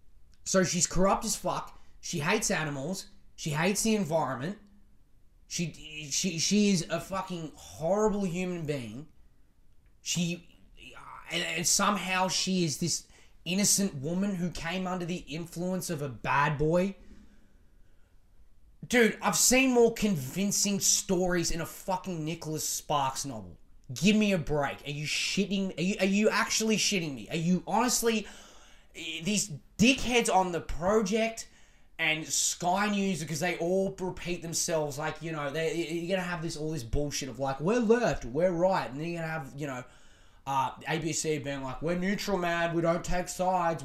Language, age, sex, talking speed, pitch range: English, 20-39, male, 160 wpm, 150-190 Hz